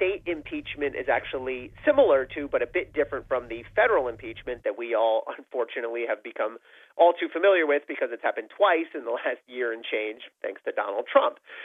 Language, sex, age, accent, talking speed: English, male, 40-59, American, 195 wpm